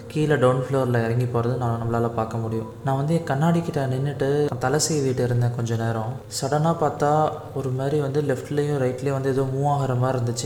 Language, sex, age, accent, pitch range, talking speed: Tamil, male, 20-39, native, 120-135 Hz, 185 wpm